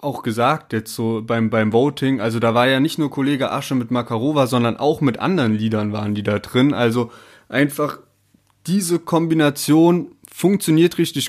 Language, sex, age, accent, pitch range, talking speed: German, male, 20-39, German, 125-160 Hz, 170 wpm